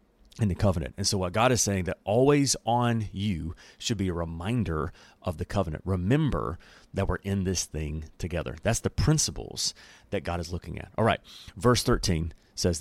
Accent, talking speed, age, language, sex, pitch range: American, 185 wpm, 30-49, English, male, 90-125 Hz